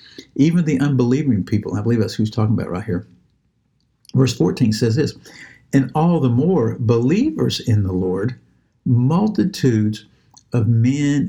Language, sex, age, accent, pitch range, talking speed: English, male, 60-79, American, 110-135 Hz, 145 wpm